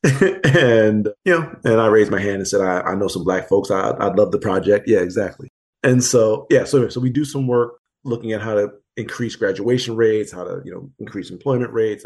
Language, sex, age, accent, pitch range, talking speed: English, male, 40-59, American, 105-130 Hz, 225 wpm